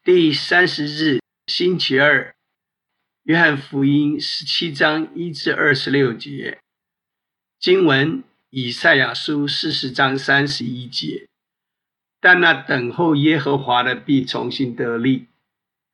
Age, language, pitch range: 50-69, Chinese, 130-165 Hz